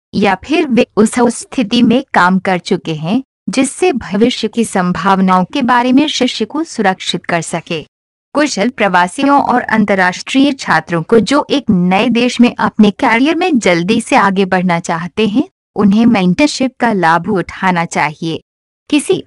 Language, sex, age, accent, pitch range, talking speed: Hindi, female, 50-69, native, 185-255 Hz, 155 wpm